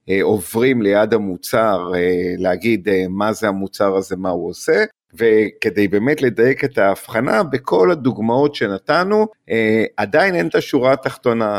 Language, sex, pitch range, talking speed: Hebrew, male, 95-125 Hz, 125 wpm